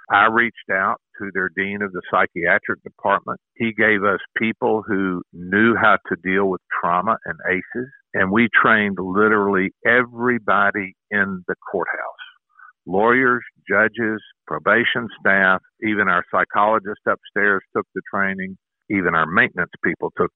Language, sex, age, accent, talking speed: English, male, 50-69, American, 140 wpm